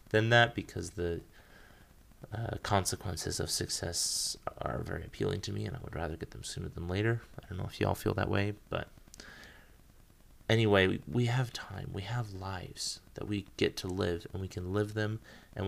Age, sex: 30-49, male